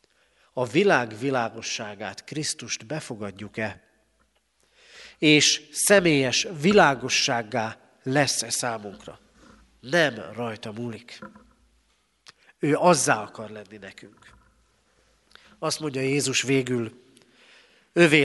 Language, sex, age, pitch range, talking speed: Hungarian, male, 40-59, 120-150 Hz, 75 wpm